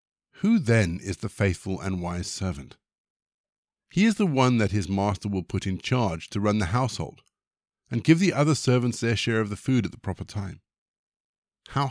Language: English